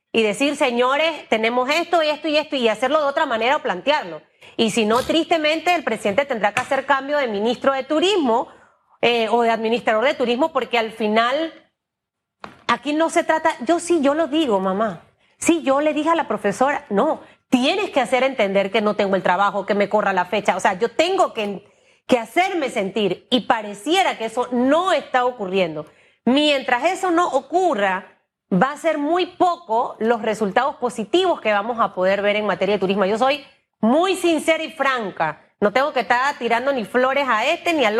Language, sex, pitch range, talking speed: Spanish, female, 220-320 Hz, 195 wpm